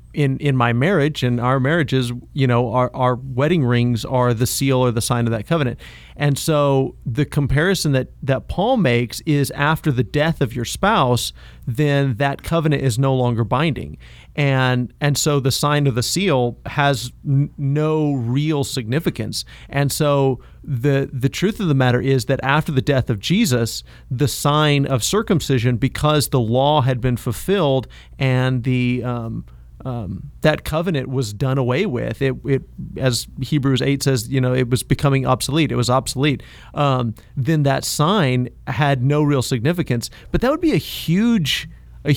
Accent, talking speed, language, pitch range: American, 170 wpm, English, 125-150 Hz